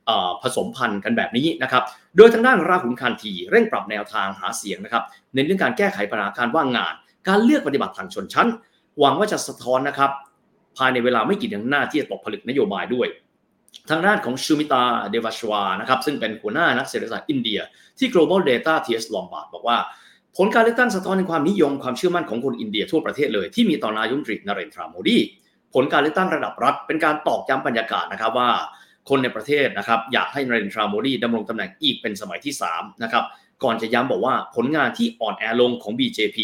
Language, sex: Thai, male